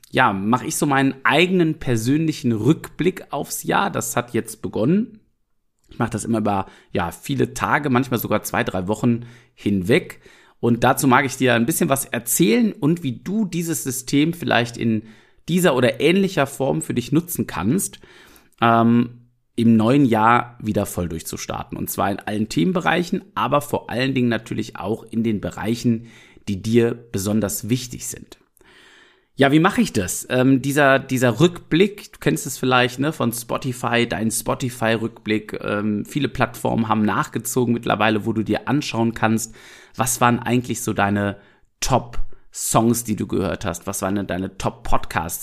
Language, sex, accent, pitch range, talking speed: German, male, German, 110-140 Hz, 160 wpm